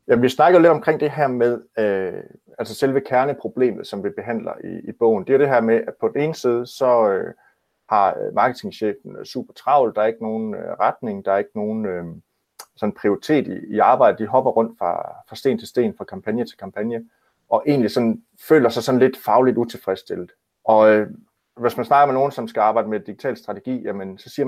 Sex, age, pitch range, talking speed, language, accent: male, 30-49, 110-135 Hz, 185 wpm, Danish, native